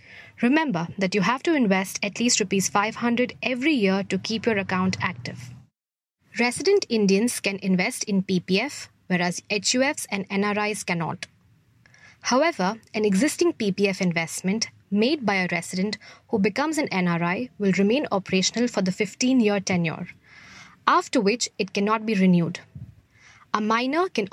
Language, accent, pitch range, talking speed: English, Indian, 190-240 Hz, 140 wpm